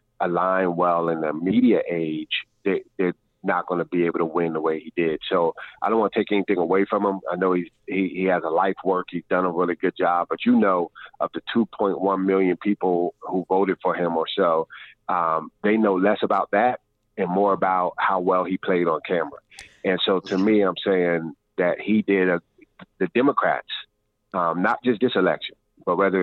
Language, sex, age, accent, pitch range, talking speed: English, male, 30-49, American, 90-100 Hz, 205 wpm